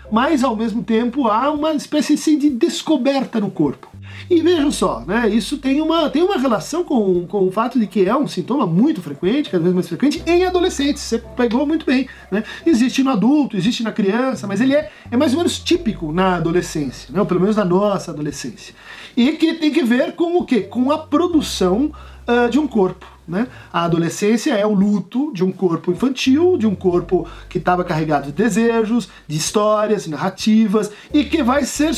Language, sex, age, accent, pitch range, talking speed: Portuguese, male, 50-69, Brazilian, 190-295 Hz, 195 wpm